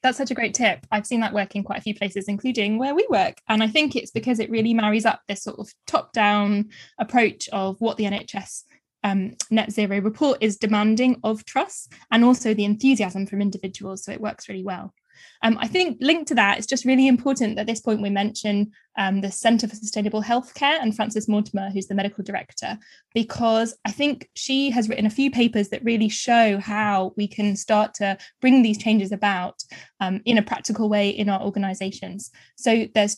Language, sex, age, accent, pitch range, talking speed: English, female, 10-29, British, 205-240 Hz, 210 wpm